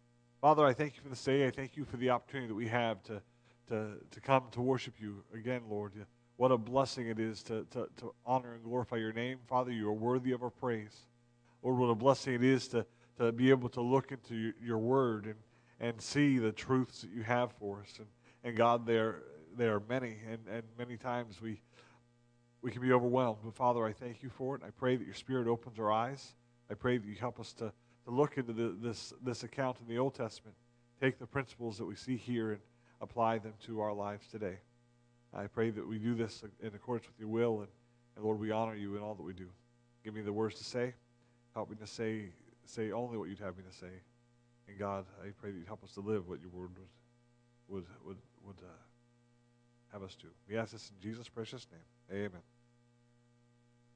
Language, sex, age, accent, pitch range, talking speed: English, male, 40-59, American, 110-120 Hz, 225 wpm